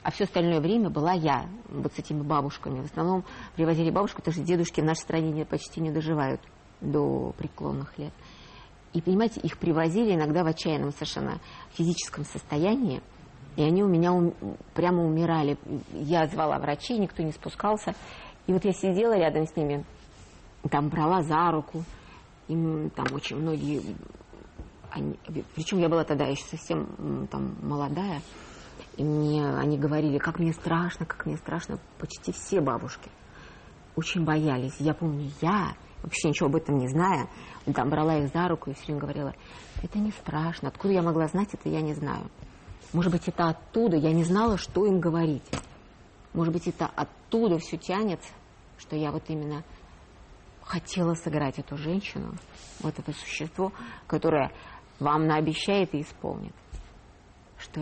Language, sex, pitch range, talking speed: Russian, female, 145-175 Hz, 150 wpm